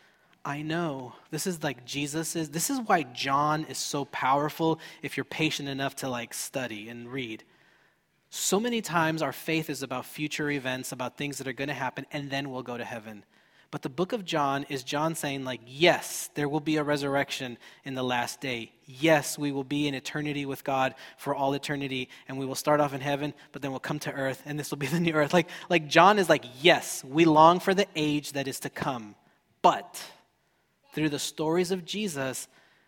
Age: 20-39